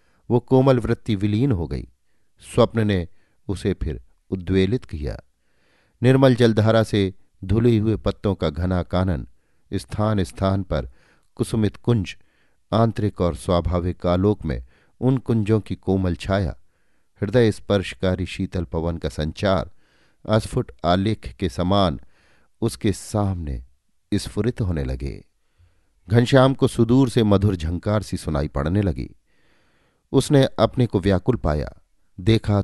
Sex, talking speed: male, 125 wpm